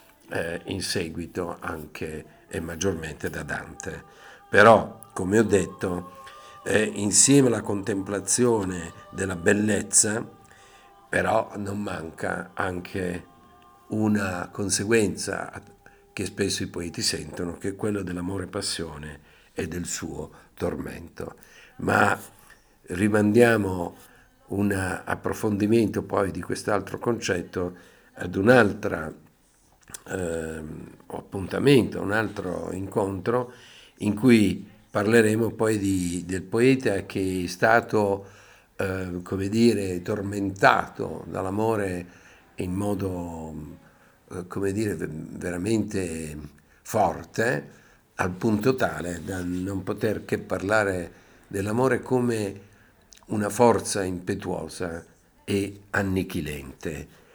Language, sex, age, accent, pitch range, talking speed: Italian, male, 50-69, native, 90-105 Hz, 90 wpm